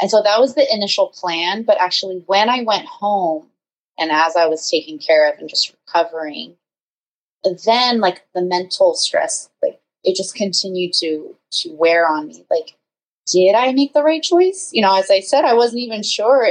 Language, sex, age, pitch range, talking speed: English, female, 20-39, 170-245 Hz, 195 wpm